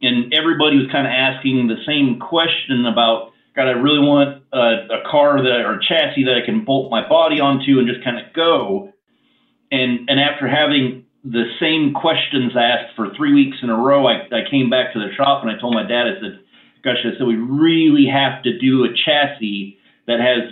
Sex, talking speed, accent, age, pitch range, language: male, 210 wpm, American, 40-59, 115-140 Hz, English